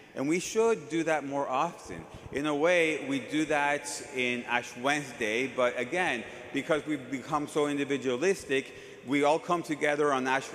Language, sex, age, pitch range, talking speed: English, male, 30-49, 125-145 Hz, 165 wpm